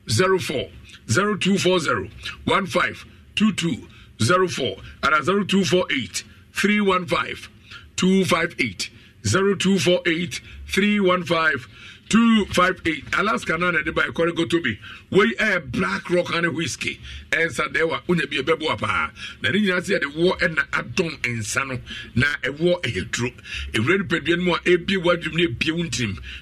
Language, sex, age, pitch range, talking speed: English, male, 50-69, 125-180 Hz, 190 wpm